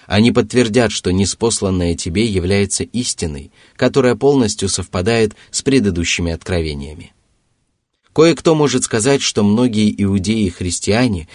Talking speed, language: 110 wpm, Russian